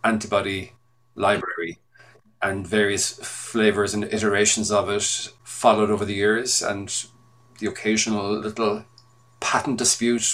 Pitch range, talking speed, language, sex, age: 110-125 Hz, 110 wpm, English, male, 40-59